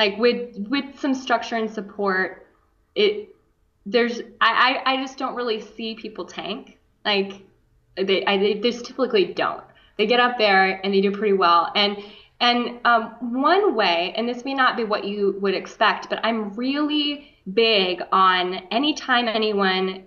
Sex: female